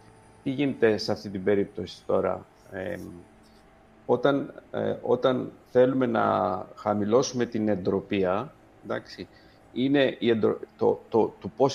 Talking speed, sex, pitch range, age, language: 80 wpm, male, 105-125 Hz, 50-69, Greek